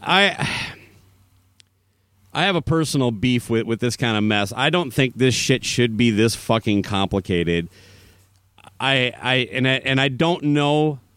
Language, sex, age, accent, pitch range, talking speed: English, male, 30-49, American, 105-145 Hz, 160 wpm